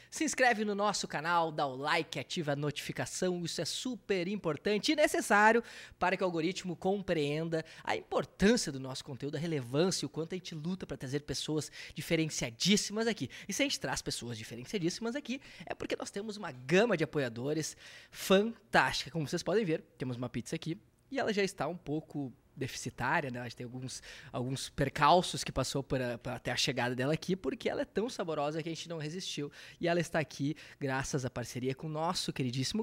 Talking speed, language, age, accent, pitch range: 195 wpm, Portuguese, 20-39, Brazilian, 130-180 Hz